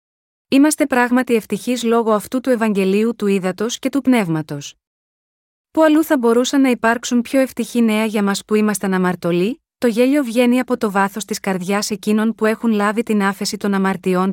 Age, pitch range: 30-49, 195-245 Hz